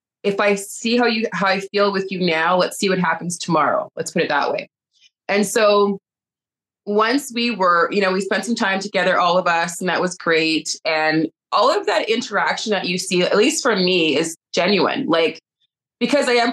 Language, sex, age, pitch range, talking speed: English, female, 20-39, 180-245 Hz, 210 wpm